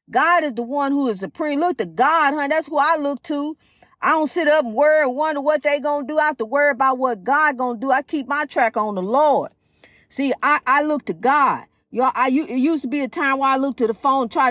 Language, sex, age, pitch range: English, female, 40-59, 235-285 Hz